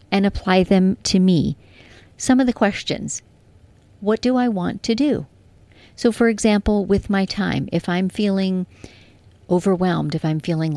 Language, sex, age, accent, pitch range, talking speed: English, female, 40-59, American, 155-205 Hz, 155 wpm